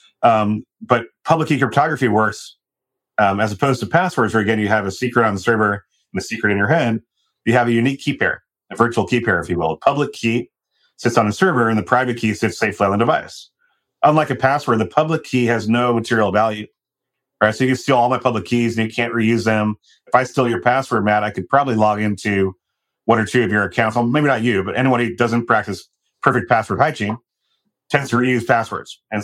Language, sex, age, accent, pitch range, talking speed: English, male, 30-49, American, 105-125 Hz, 230 wpm